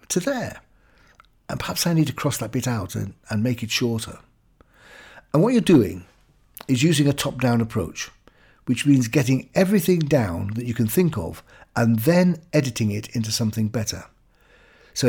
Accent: British